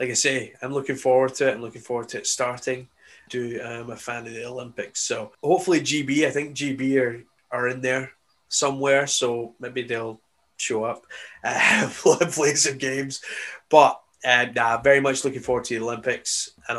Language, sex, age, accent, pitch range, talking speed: English, male, 20-39, British, 120-140 Hz, 185 wpm